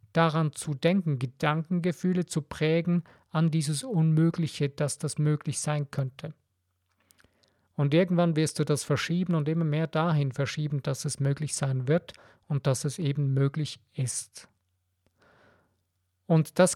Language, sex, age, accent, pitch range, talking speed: German, male, 50-69, German, 140-165 Hz, 135 wpm